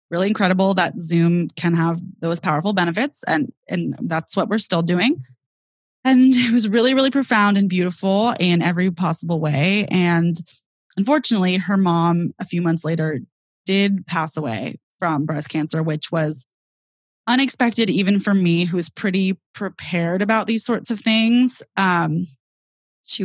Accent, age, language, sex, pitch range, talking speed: American, 20-39, English, female, 170-215 Hz, 150 wpm